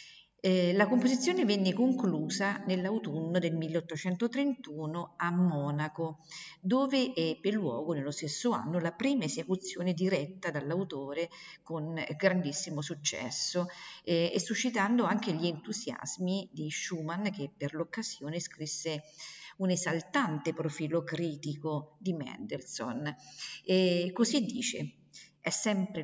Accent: native